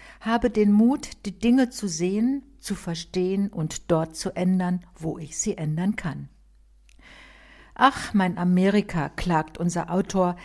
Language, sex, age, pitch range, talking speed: German, female, 60-79, 175-220 Hz, 140 wpm